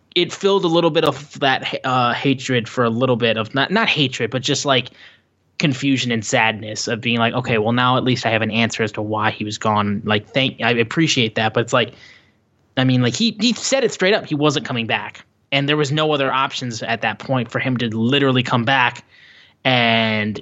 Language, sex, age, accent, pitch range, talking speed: English, male, 10-29, American, 115-145 Hz, 230 wpm